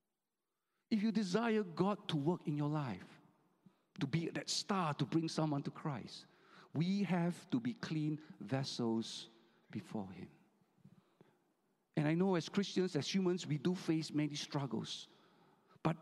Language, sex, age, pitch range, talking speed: English, male, 50-69, 140-185 Hz, 145 wpm